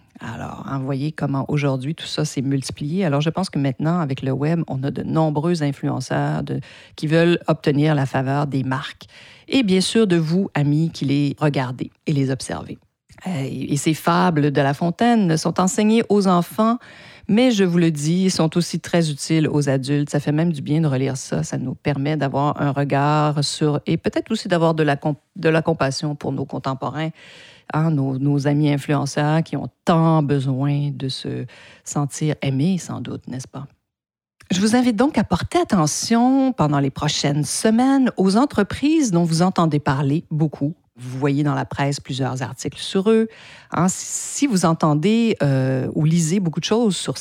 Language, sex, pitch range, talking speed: French, female, 140-175 Hz, 190 wpm